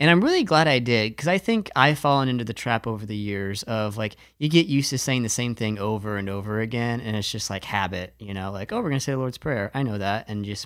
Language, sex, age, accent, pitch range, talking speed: English, male, 30-49, American, 105-145 Hz, 295 wpm